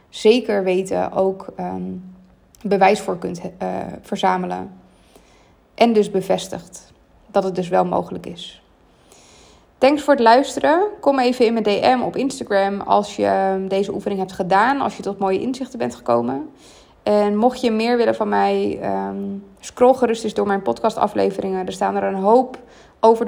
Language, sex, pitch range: Dutch, female, 190-225 Hz